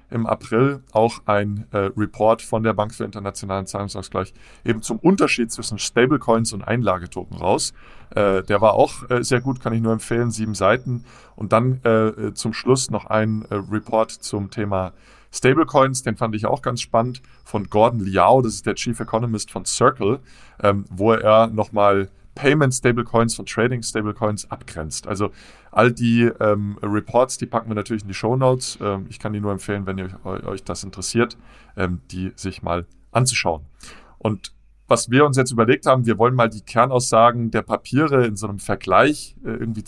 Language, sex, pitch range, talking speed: German, male, 100-120 Hz, 185 wpm